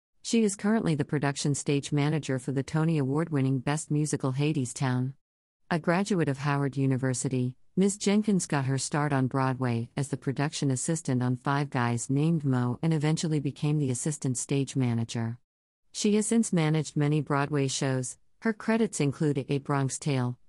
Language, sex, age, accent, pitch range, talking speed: English, female, 50-69, American, 130-160 Hz, 165 wpm